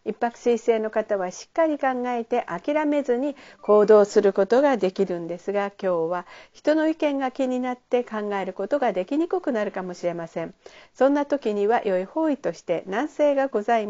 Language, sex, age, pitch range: Japanese, female, 50-69, 200-270 Hz